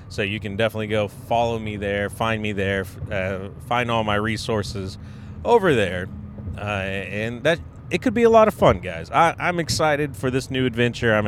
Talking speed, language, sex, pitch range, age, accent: 190 wpm, English, male, 100-125 Hz, 30-49, American